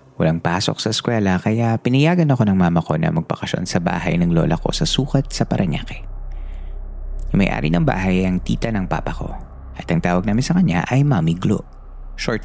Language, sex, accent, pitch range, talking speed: Filipino, male, native, 85-125 Hz, 195 wpm